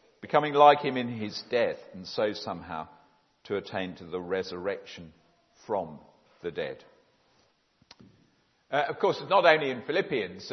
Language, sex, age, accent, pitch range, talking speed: English, male, 50-69, British, 100-155 Hz, 140 wpm